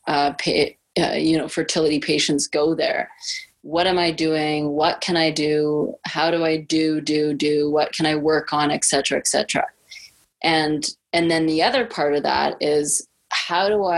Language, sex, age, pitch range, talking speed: English, female, 30-49, 150-170 Hz, 180 wpm